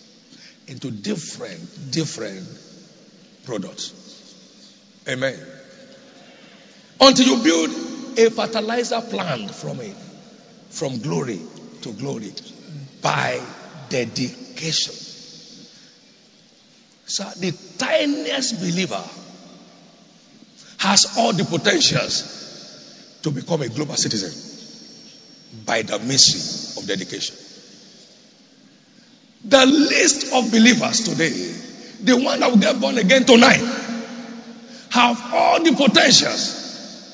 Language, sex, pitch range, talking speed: English, male, 195-250 Hz, 85 wpm